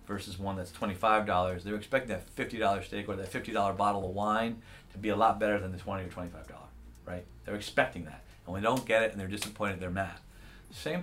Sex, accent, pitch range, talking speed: male, American, 95-120 Hz, 225 wpm